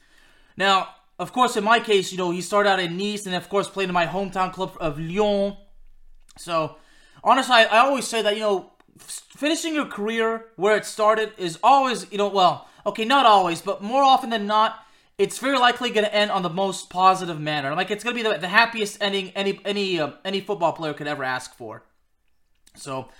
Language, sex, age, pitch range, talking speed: English, male, 20-39, 155-200 Hz, 215 wpm